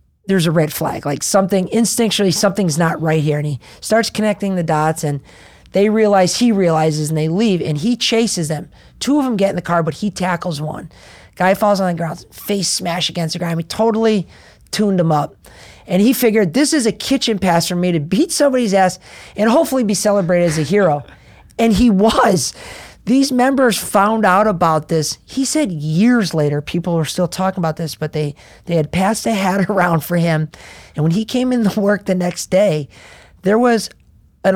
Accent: American